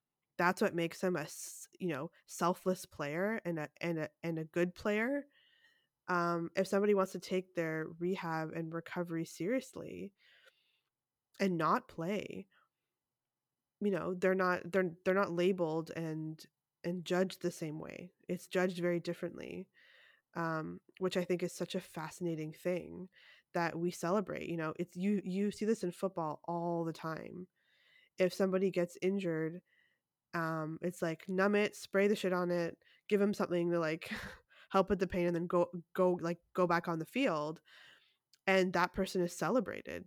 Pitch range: 165-190 Hz